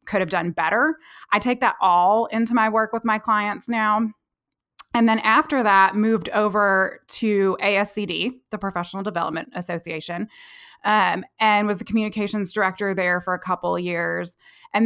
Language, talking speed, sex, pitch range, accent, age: English, 160 wpm, female, 185-230 Hz, American, 20-39